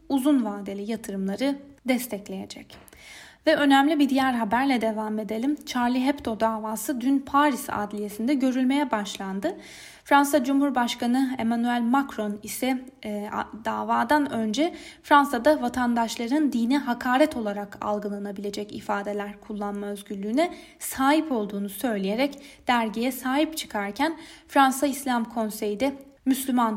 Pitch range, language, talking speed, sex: 220-280 Hz, Turkish, 105 wpm, female